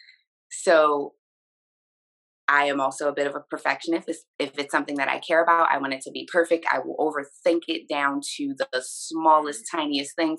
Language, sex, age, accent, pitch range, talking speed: English, female, 20-39, American, 140-190 Hz, 190 wpm